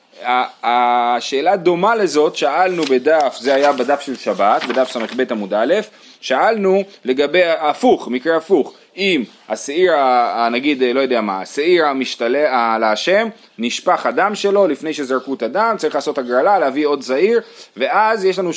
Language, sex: Hebrew, male